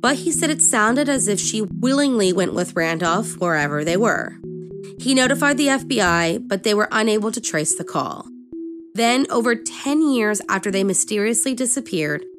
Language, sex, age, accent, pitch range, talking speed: English, female, 20-39, American, 175-255 Hz, 170 wpm